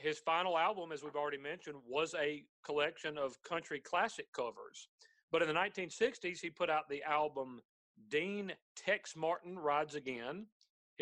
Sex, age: male, 40-59